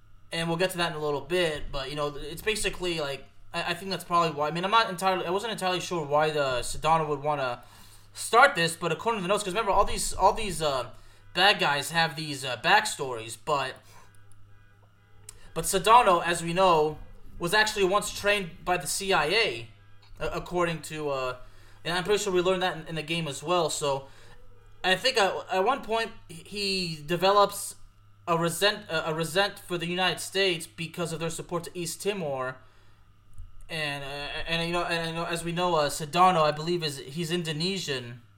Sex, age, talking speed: male, 20-39, 195 wpm